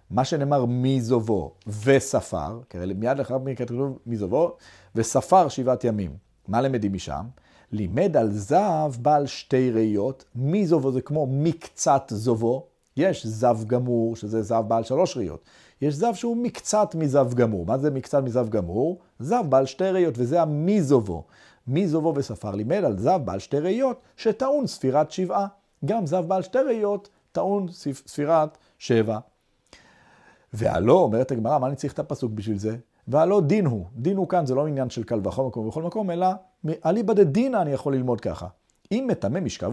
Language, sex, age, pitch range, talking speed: Hebrew, male, 40-59, 120-160 Hz, 170 wpm